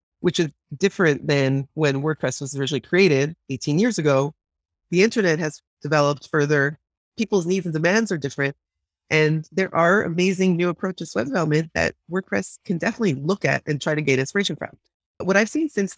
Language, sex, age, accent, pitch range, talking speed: English, female, 30-49, American, 135-180 Hz, 180 wpm